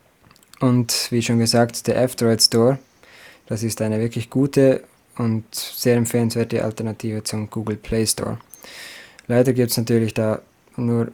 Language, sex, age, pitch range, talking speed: German, male, 20-39, 110-125 Hz, 140 wpm